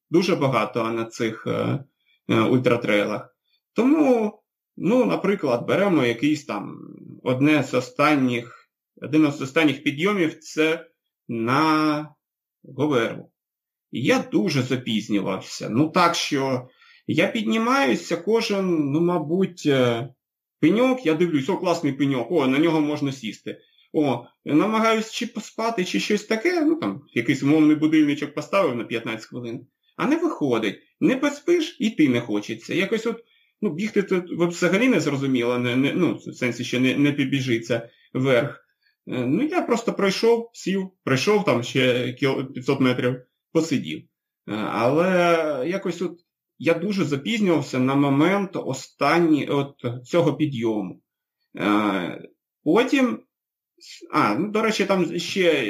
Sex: male